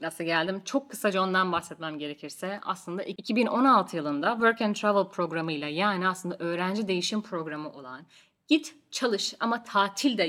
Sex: female